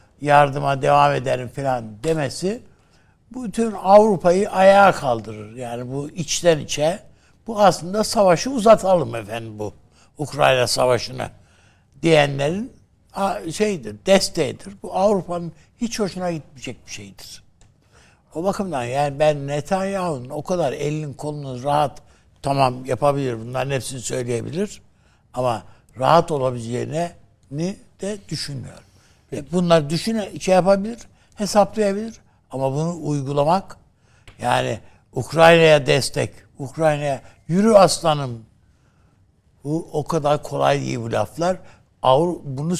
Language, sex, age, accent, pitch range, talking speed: Turkish, male, 60-79, native, 130-185 Hz, 100 wpm